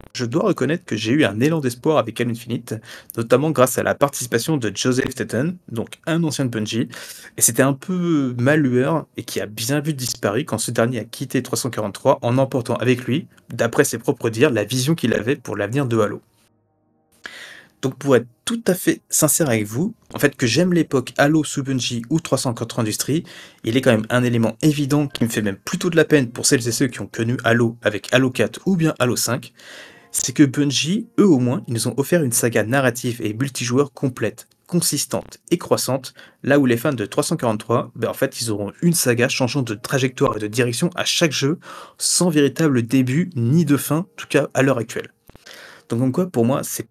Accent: French